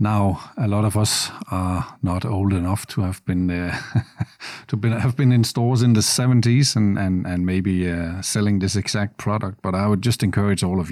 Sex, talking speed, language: male, 205 wpm, English